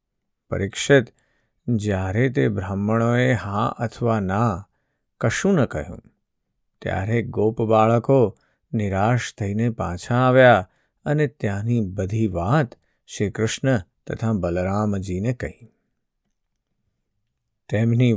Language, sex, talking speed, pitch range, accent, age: Gujarati, male, 35 wpm, 100-125 Hz, native, 50-69